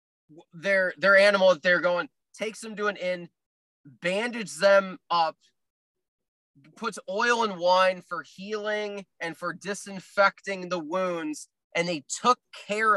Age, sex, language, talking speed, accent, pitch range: 20-39, male, English, 130 wpm, American, 175-210 Hz